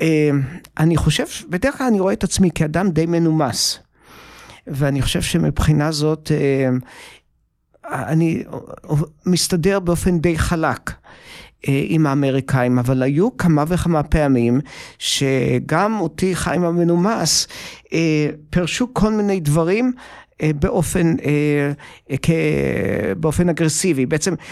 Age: 50-69